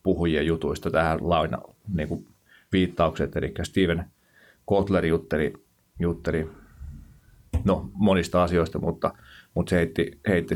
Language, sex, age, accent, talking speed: Finnish, male, 30-49, native, 110 wpm